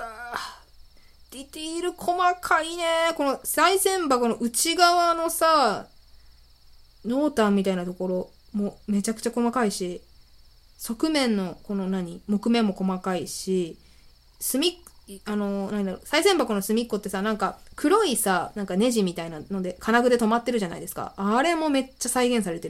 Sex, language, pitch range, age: female, Japanese, 185-290 Hz, 20-39